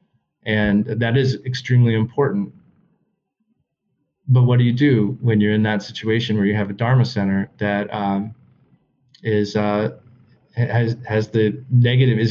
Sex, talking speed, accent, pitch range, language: male, 145 wpm, American, 105-125 Hz, English